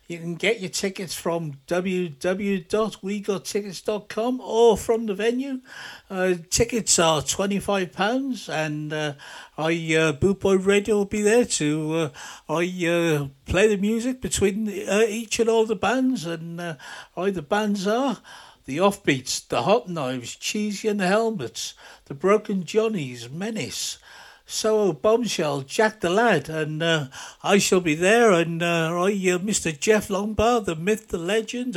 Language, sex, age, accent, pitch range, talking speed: English, male, 60-79, British, 165-220 Hz, 150 wpm